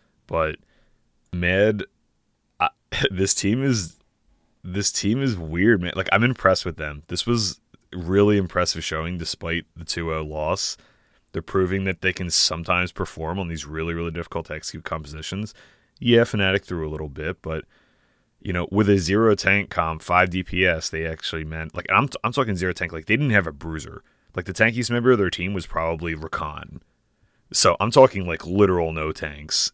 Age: 30-49